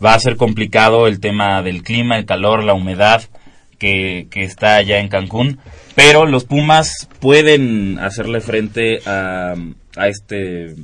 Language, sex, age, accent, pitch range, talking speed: Spanish, male, 20-39, Mexican, 100-120 Hz, 150 wpm